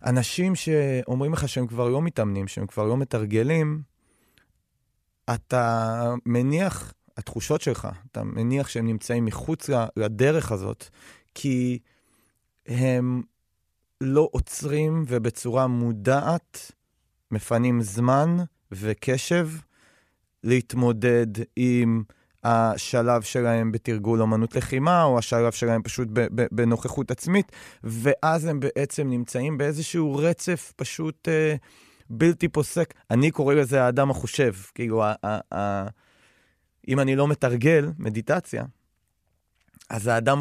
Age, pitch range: 30-49, 115-140 Hz